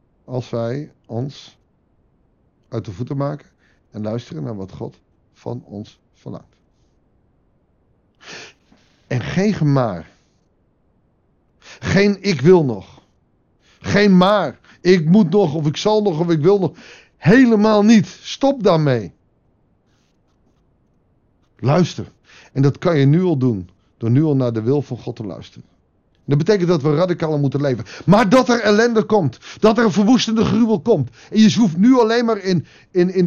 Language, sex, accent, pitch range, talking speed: Dutch, male, Dutch, 125-200 Hz, 150 wpm